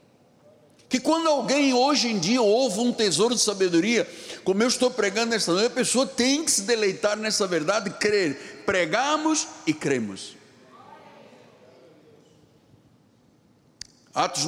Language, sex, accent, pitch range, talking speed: Portuguese, male, Brazilian, 170-230 Hz, 130 wpm